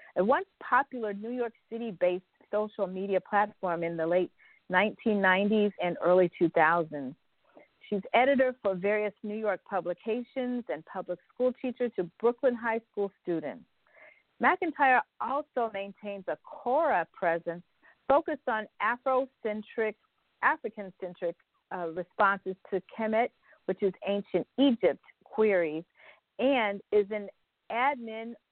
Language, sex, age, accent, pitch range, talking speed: English, female, 50-69, American, 180-235 Hz, 115 wpm